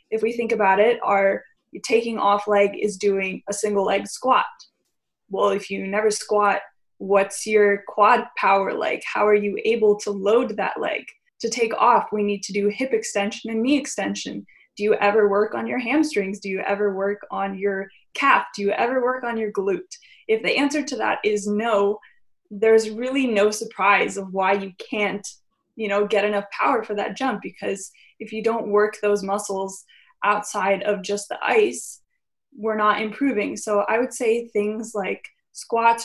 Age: 20-39